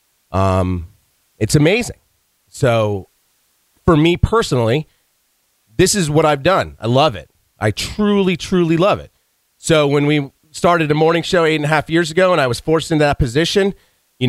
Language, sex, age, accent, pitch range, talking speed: English, male, 30-49, American, 115-160 Hz, 170 wpm